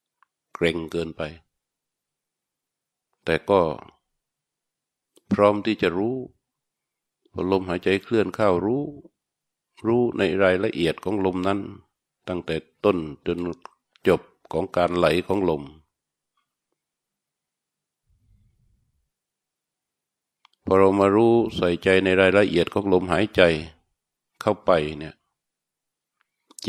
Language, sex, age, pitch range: Thai, male, 60-79, 85-105 Hz